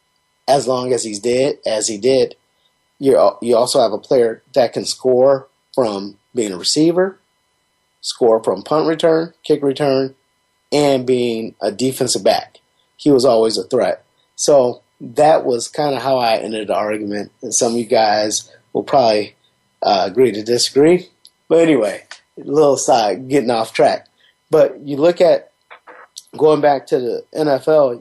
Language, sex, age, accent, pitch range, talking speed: English, male, 30-49, American, 125-155 Hz, 160 wpm